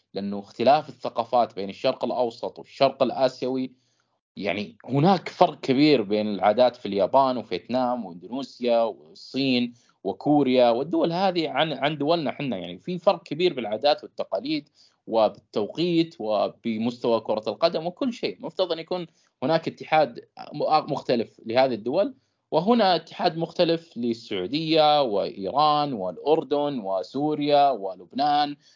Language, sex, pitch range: Arabic, male, 120-170 Hz